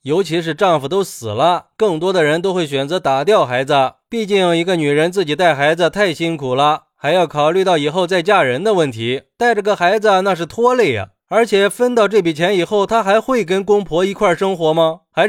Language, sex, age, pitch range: Chinese, male, 20-39, 155-205 Hz